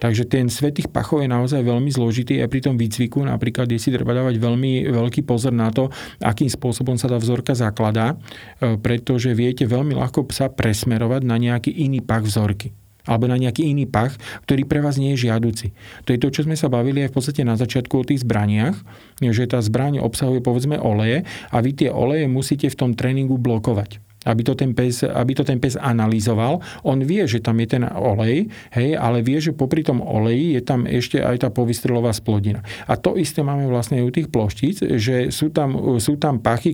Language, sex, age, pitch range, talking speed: Slovak, male, 40-59, 115-140 Hz, 205 wpm